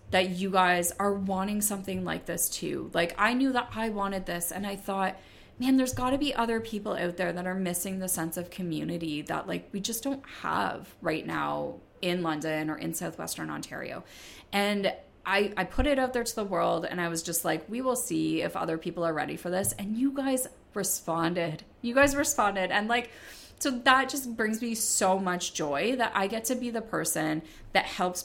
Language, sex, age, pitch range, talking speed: English, female, 20-39, 165-225 Hz, 210 wpm